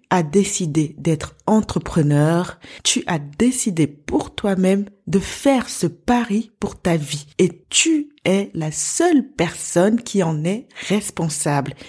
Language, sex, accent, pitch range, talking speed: French, female, French, 145-180 Hz, 130 wpm